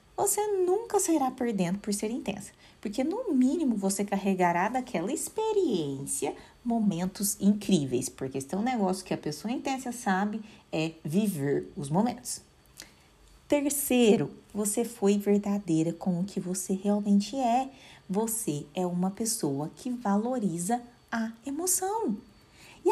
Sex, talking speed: female, 130 wpm